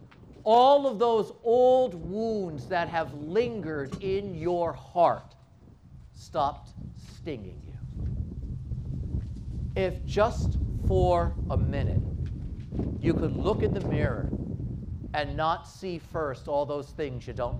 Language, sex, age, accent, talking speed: English, male, 50-69, American, 115 wpm